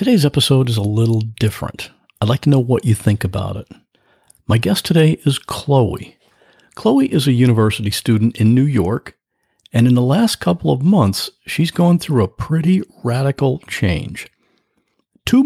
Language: English